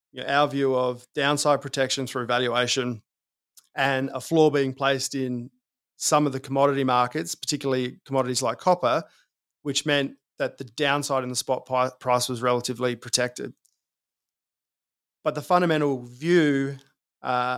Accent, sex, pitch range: Australian, male, 125-145 Hz